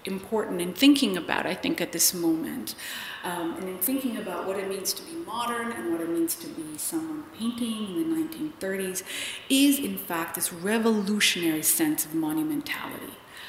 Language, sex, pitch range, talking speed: English, female, 175-240 Hz, 175 wpm